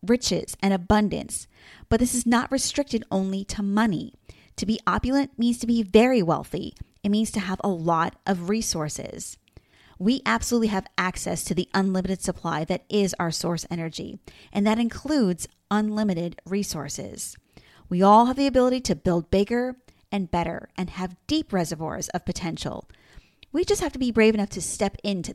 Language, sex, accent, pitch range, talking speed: English, female, American, 185-235 Hz, 170 wpm